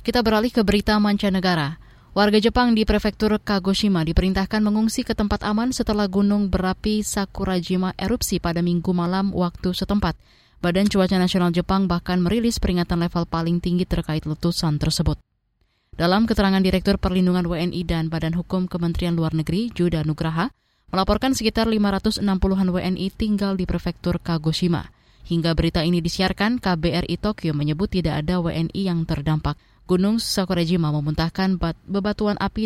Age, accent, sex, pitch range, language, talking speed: 20-39, native, female, 170-210 Hz, Indonesian, 140 wpm